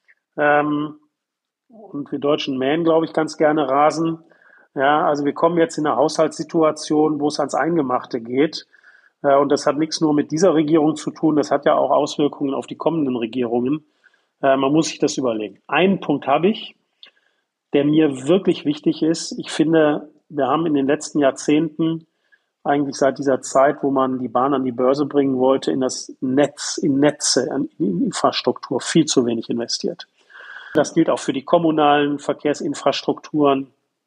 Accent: German